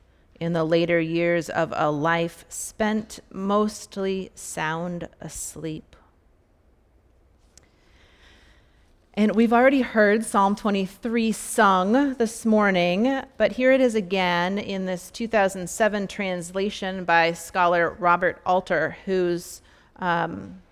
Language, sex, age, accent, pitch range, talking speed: English, female, 30-49, American, 165-205 Hz, 100 wpm